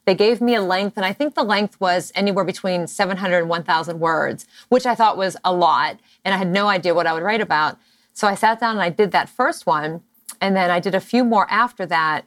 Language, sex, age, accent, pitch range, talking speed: English, female, 30-49, American, 180-220 Hz, 255 wpm